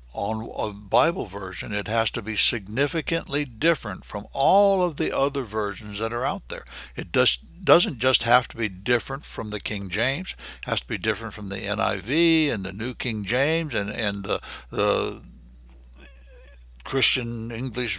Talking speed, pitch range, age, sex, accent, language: 170 wpm, 105-135 Hz, 60-79, male, American, English